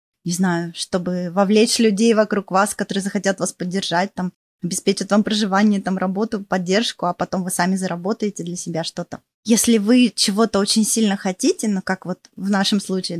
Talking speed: 175 wpm